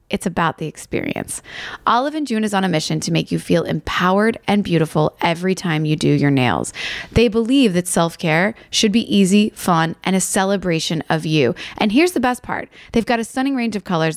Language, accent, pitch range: English, American, 165-220 Hz